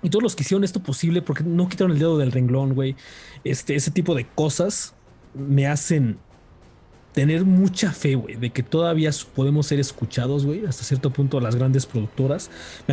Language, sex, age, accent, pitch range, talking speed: Spanish, male, 20-39, Mexican, 130-175 Hz, 185 wpm